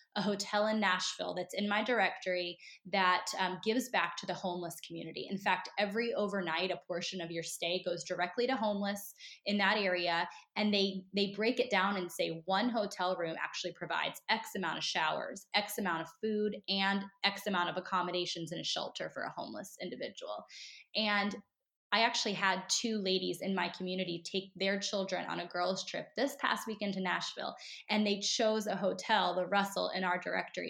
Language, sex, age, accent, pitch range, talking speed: English, female, 20-39, American, 185-220 Hz, 190 wpm